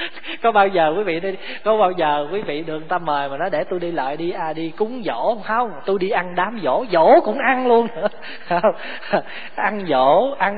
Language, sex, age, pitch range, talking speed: Vietnamese, male, 20-39, 170-220 Hz, 220 wpm